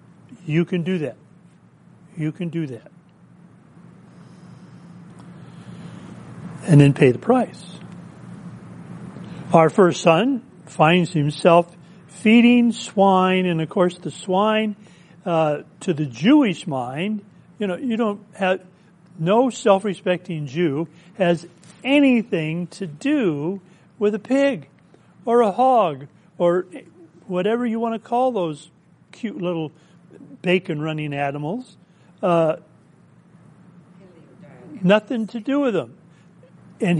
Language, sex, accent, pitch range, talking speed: English, male, American, 165-205 Hz, 110 wpm